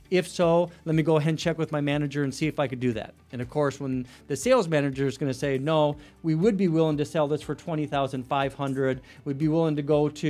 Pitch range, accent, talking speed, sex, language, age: 135-165 Hz, American, 260 wpm, male, English, 40-59